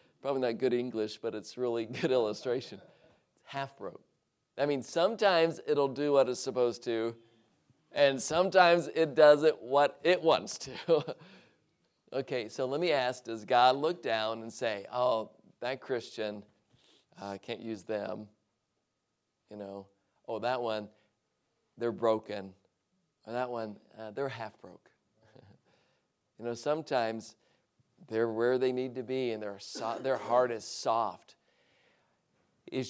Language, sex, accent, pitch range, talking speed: English, male, American, 115-145 Hz, 135 wpm